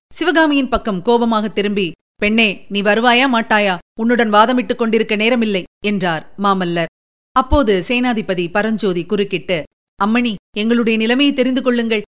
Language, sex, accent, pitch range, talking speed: Tamil, female, native, 205-245 Hz, 115 wpm